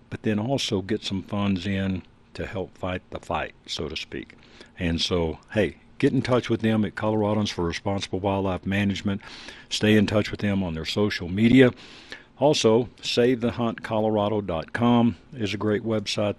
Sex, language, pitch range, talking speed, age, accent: male, English, 90-110 Hz, 170 wpm, 60-79, American